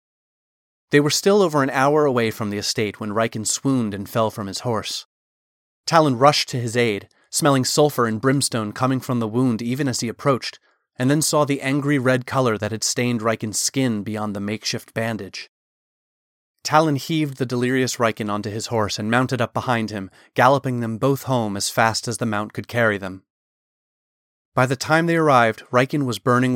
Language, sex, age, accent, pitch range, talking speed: English, male, 30-49, American, 110-135 Hz, 190 wpm